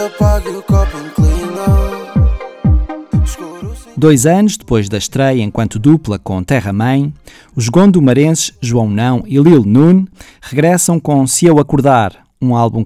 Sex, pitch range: male, 110-145 Hz